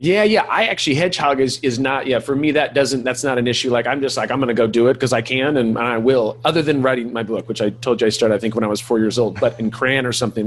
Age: 30-49